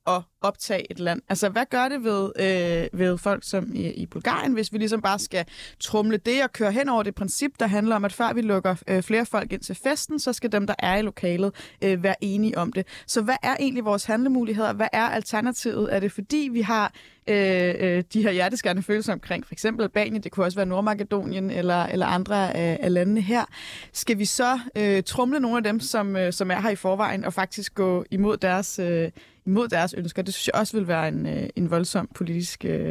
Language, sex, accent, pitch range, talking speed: Danish, female, native, 185-230 Hz, 220 wpm